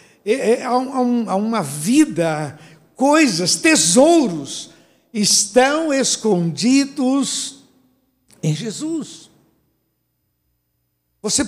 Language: Portuguese